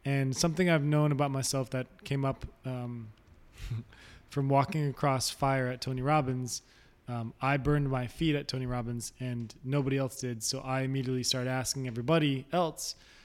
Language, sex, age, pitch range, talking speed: English, male, 20-39, 120-145 Hz, 165 wpm